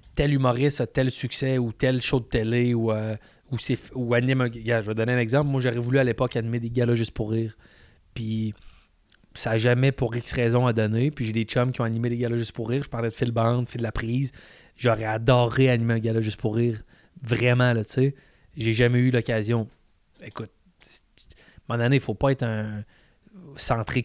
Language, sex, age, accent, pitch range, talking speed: French, male, 20-39, Canadian, 115-130 Hz, 220 wpm